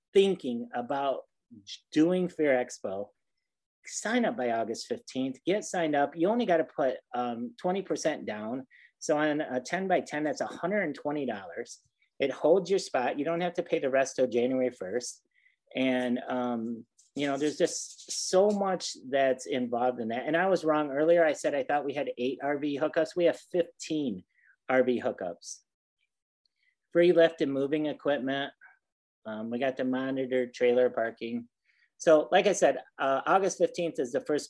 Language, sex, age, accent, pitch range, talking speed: English, male, 40-59, American, 120-160 Hz, 165 wpm